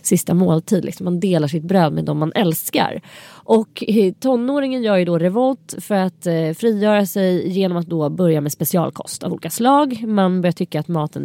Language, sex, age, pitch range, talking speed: English, female, 30-49, 165-210 Hz, 180 wpm